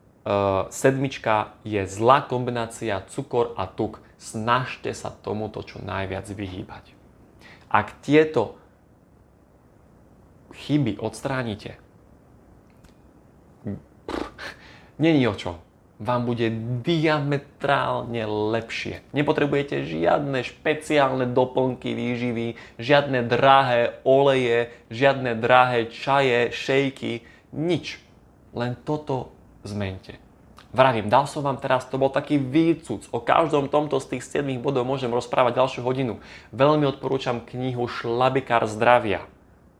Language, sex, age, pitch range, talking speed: Slovak, male, 20-39, 105-130 Hz, 100 wpm